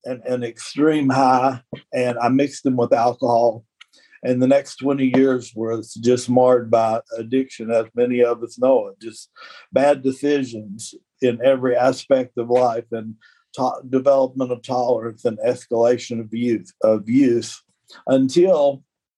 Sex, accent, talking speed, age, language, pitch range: male, American, 140 wpm, 50-69, English, 115-135 Hz